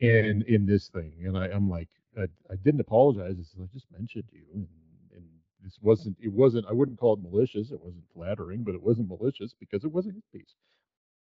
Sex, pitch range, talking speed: male, 95-125 Hz, 220 wpm